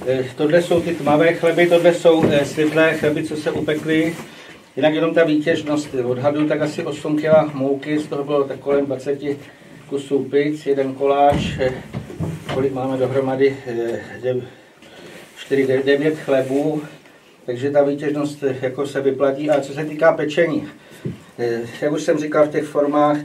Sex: male